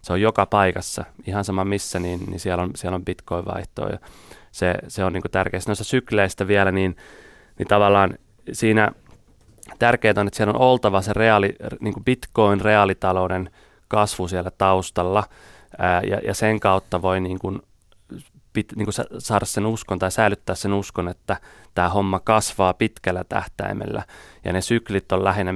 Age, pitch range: 30-49, 95-105 Hz